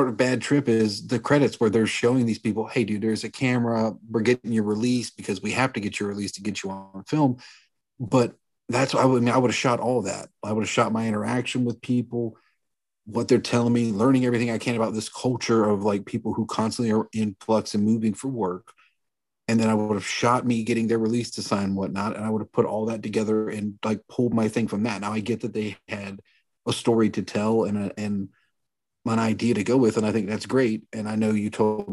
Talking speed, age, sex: 245 wpm, 40-59, male